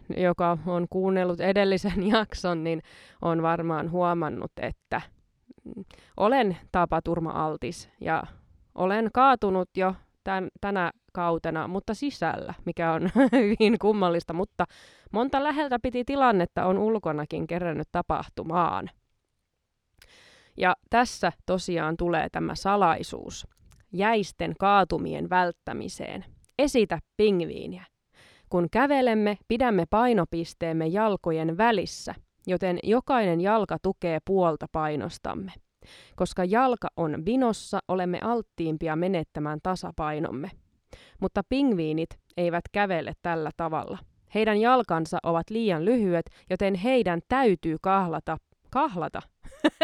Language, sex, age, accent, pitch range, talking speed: Finnish, female, 20-39, native, 170-220 Hz, 100 wpm